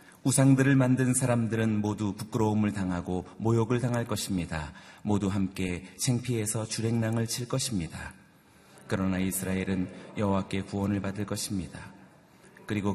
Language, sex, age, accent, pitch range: Korean, male, 30-49, native, 95-120 Hz